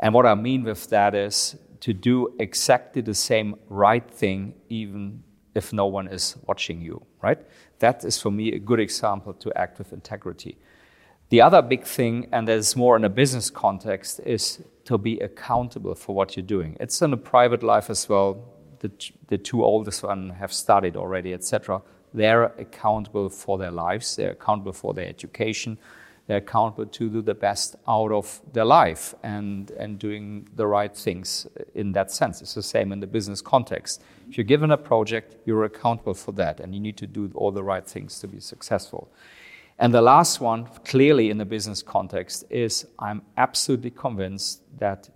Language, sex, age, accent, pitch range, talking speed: English, male, 40-59, German, 95-115 Hz, 185 wpm